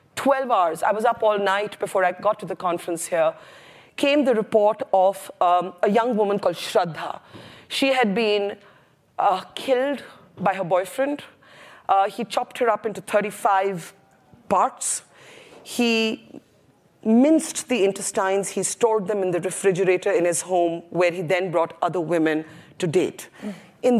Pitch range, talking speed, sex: 175-225 Hz, 155 wpm, female